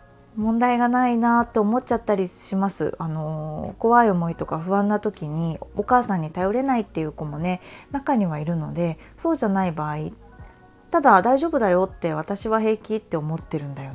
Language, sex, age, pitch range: Japanese, female, 20-39, 160-235 Hz